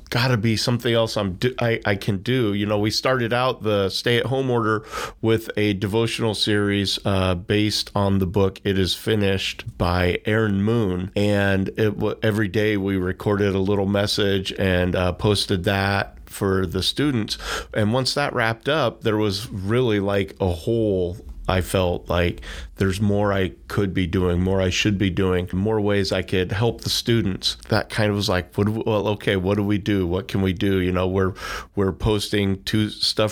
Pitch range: 95-110 Hz